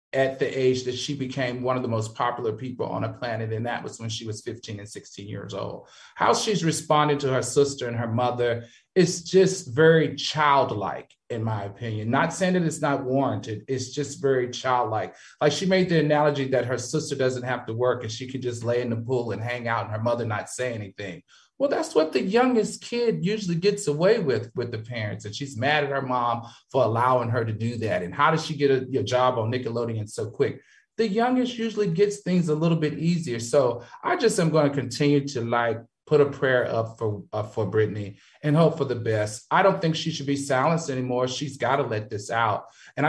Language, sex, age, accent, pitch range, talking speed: English, male, 30-49, American, 120-155 Hz, 230 wpm